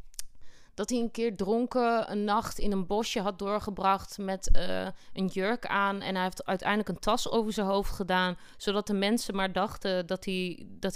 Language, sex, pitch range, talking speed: Dutch, female, 195-245 Hz, 180 wpm